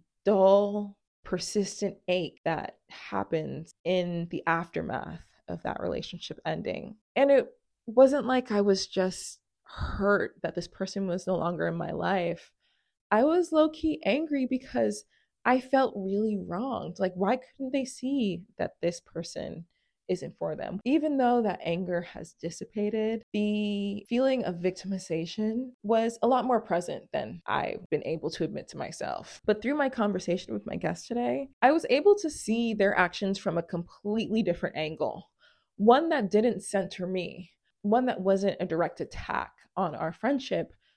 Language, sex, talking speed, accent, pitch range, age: English, female, 155 wpm, American, 180-245 Hz, 20-39